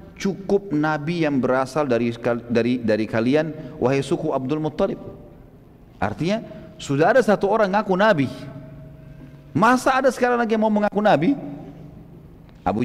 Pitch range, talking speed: 130-195 Hz, 130 wpm